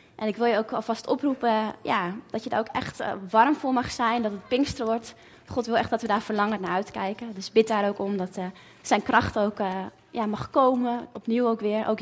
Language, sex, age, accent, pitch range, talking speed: Dutch, female, 20-39, Dutch, 195-240 Hz, 230 wpm